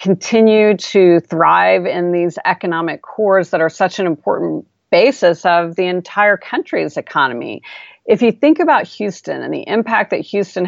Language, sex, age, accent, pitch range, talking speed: English, female, 40-59, American, 165-200 Hz, 155 wpm